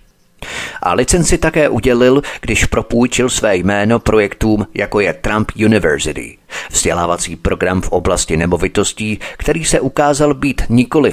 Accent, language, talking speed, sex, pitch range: native, Czech, 125 wpm, male, 95-120 Hz